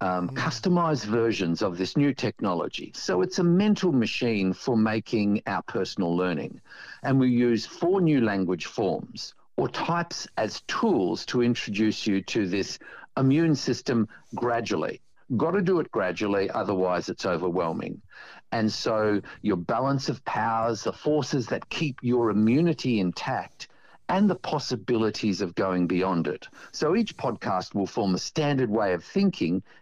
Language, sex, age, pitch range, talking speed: English, male, 50-69, 100-145 Hz, 145 wpm